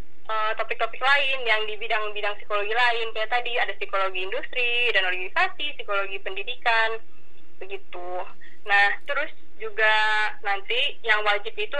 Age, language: 20-39, Indonesian